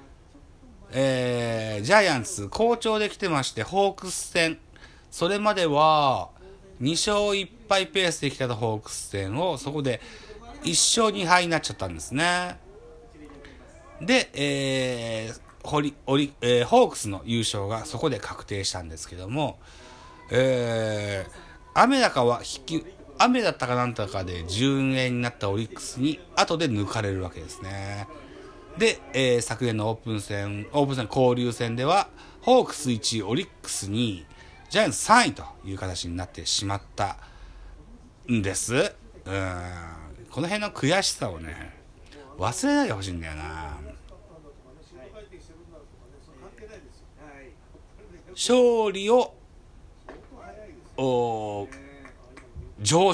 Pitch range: 95-150 Hz